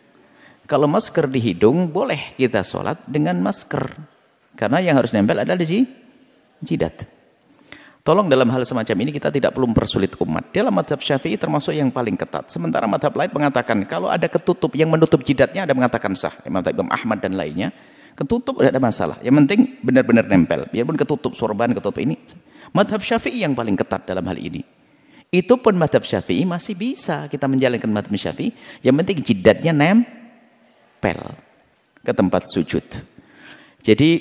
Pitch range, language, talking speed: 110-180 Hz, Indonesian, 155 wpm